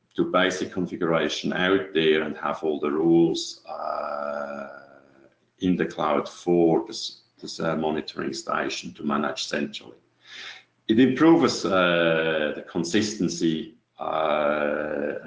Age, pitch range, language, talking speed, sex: 40-59, 80-100 Hz, English, 115 wpm, male